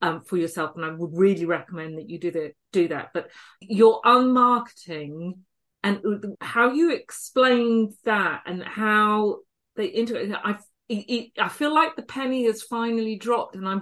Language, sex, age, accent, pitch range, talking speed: English, female, 40-59, British, 180-235 Hz, 170 wpm